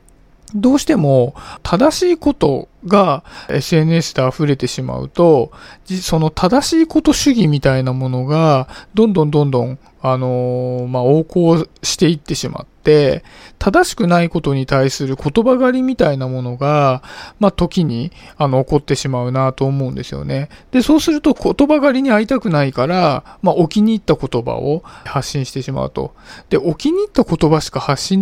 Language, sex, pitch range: Japanese, male, 135-225 Hz